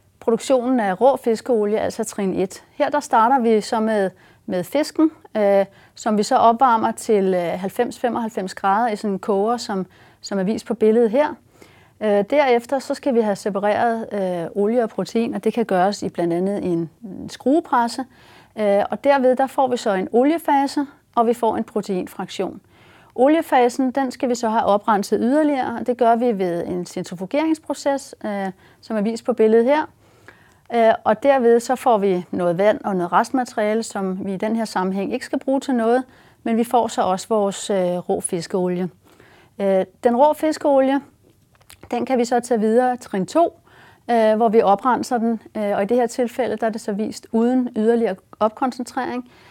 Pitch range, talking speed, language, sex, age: 200-255 Hz, 180 wpm, Danish, female, 30-49